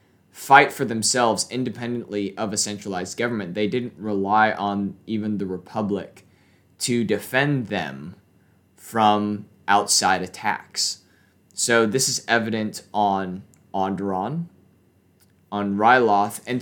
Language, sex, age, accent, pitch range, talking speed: English, male, 20-39, American, 95-110 Hz, 110 wpm